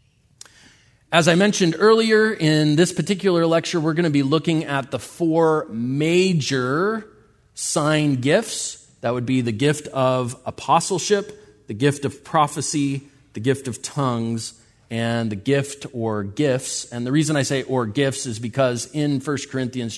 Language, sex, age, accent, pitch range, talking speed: English, male, 30-49, American, 120-155 Hz, 155 wpm